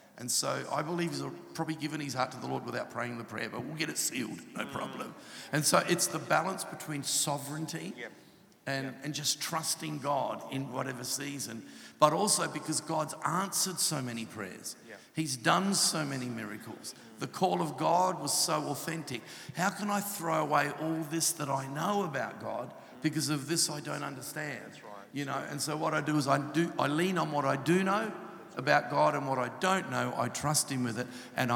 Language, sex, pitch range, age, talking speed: English, male, 130-160 Hz, 50-69, 200 wpm